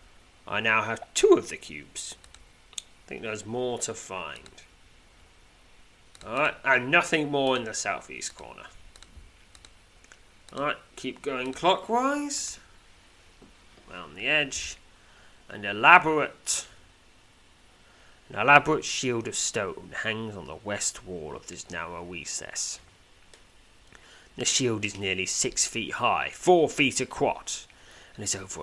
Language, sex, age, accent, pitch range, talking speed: English, male, 30-49, British, 90-125 Hz, 120 wpm